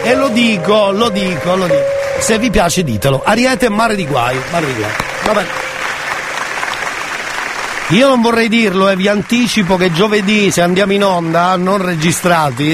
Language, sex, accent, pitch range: Italian, male, native, 155-200 Hz